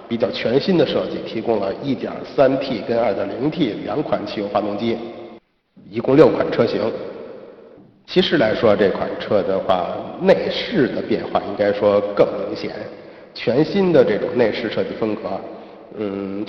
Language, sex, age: Chinese, male, 50-69